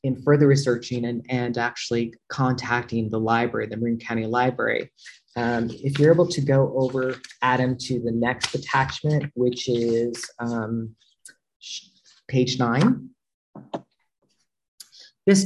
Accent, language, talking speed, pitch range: American, English, 120 wpm, 115-140 Hz